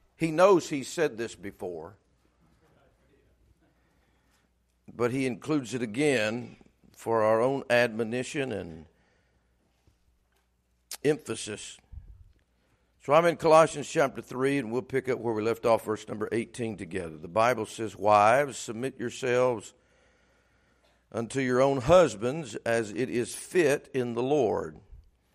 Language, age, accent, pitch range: English, 50-69, American, 90-130 Hz